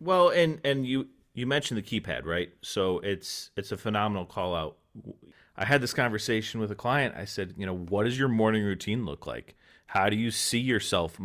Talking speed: 210 wpm